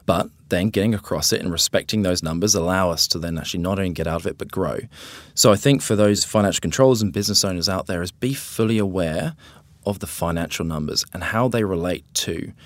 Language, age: English, 20-39